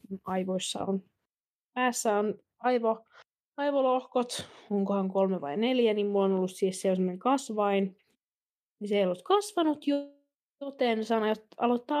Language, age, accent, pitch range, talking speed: Finnish, 20-39, native, 200-255 Hz, 125 wpm